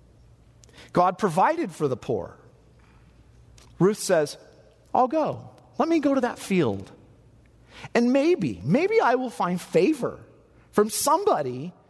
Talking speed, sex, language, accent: 120 wpm, male, English, American